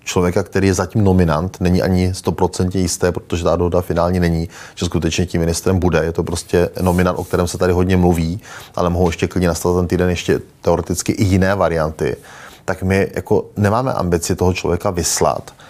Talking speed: 185 wpm